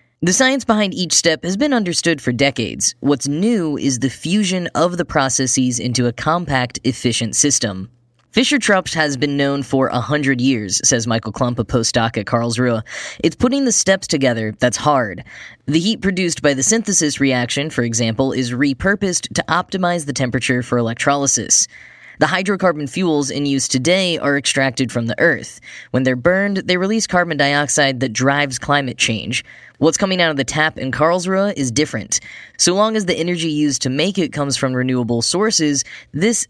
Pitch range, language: 125-175 Hz, English